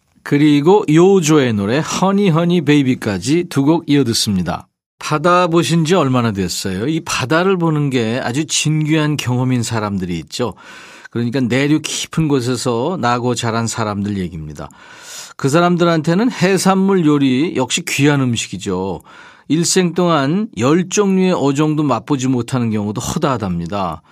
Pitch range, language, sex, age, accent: 120-165 Hz, Korean, male, 40-59, native